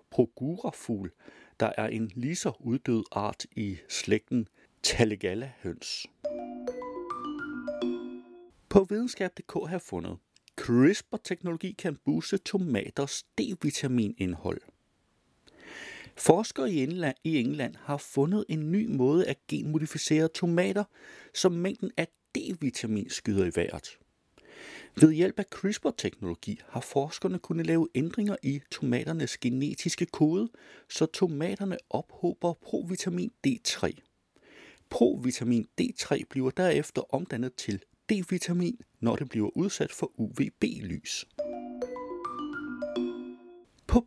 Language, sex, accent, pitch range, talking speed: Danish, male, native, 125-195 Hz, 95 wpm